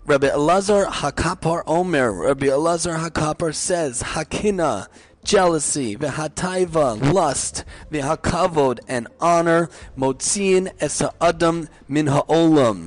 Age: 30-49